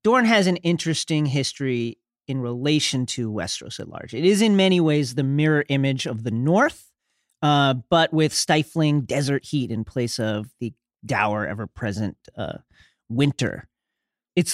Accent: American